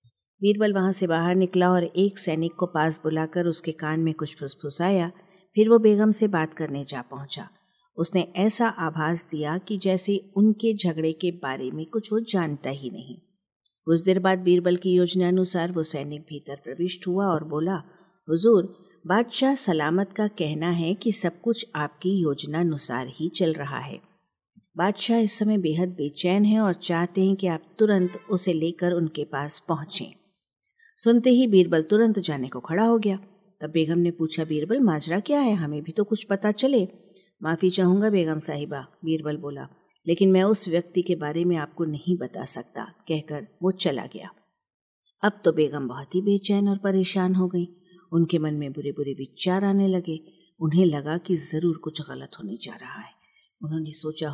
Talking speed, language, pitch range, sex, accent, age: 180 wpm, Hindi, 155-190 Hz, female, native, 50-69